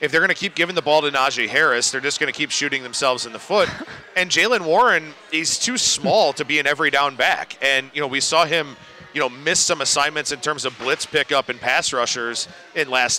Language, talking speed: English, 245 wpm